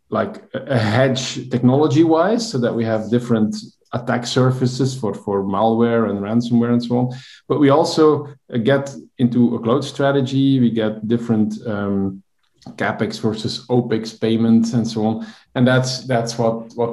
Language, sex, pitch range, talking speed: English, male, 110-130 Hz, 155 wpm